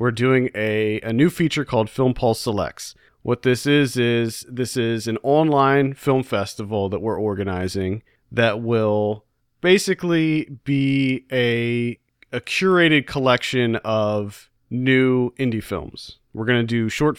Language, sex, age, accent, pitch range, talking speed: English, male, 40-59, American, 110-135 Hz, 140 wpm